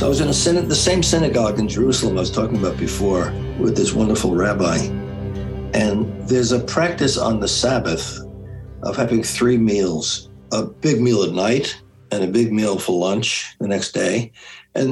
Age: 60-79